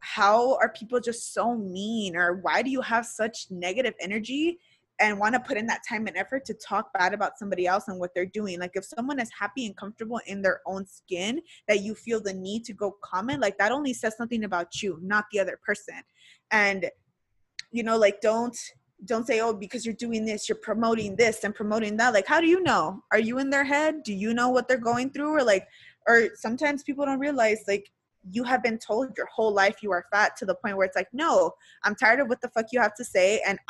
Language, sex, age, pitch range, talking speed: English, female, 20-39, 195-240 Hz, 240 wpm